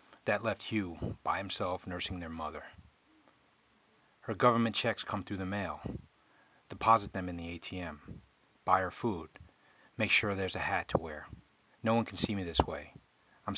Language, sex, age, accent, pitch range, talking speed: English, male, 40-59, American, 85-105 Hz, 170 wpm